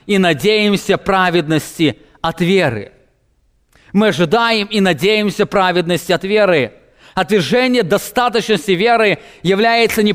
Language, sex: English, male